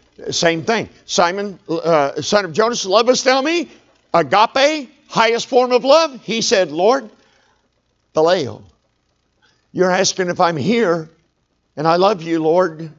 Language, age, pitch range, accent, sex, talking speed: English, 60-79, 115-180 Hz, American, male, 135 wpm